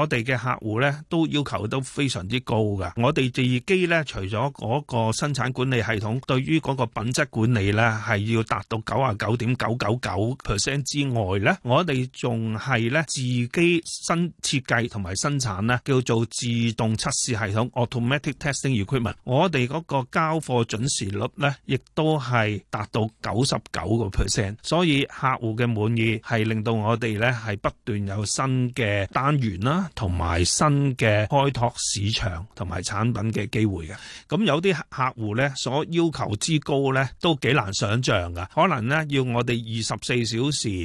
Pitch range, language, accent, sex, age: 110-140 Hz, Chinese, native, male, 30-49